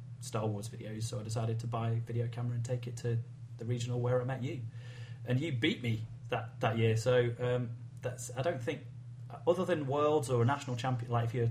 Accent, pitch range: British, 115-125 Hz